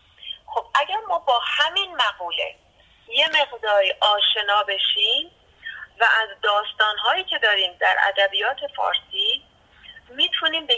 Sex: female